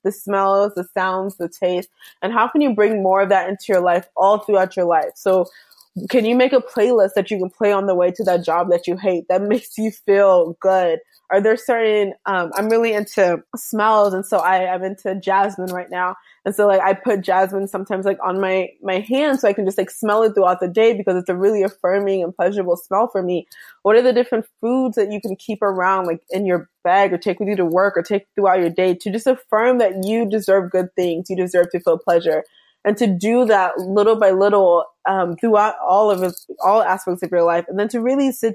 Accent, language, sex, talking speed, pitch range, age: American, English, female, 235 wpm, 180-220 Hz, 20-39